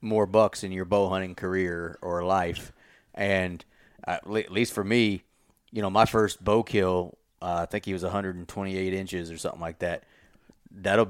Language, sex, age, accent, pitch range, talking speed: English, male, 30-49, American, 90-110 Hz, 175 wpm